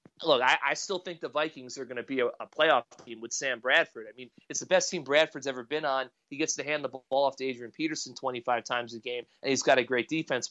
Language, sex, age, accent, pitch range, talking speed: English, male, 30-49, American, 125-160 Hz, 275 wpm